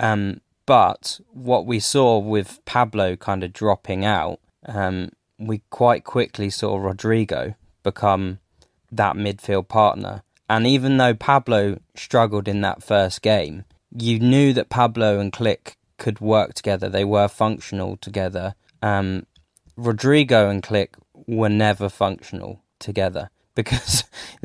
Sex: male